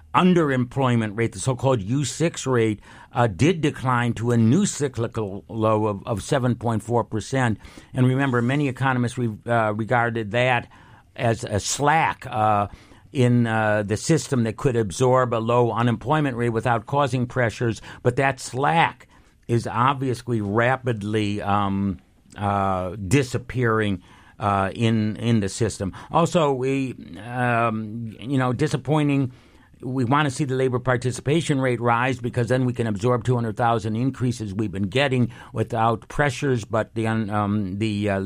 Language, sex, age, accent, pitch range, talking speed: English, male, 60-79, American, 110-130 Hz, 140 wpm